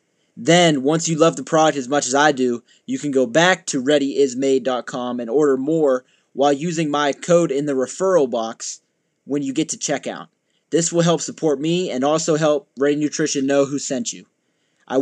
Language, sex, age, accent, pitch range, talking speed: English, male, 20-39, American, 135-165 Hz, 190 wpm